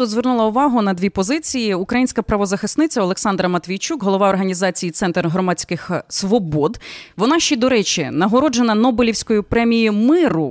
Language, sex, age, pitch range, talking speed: Ukrainian, female, 20-39, 185-255 Hz, 125 wpm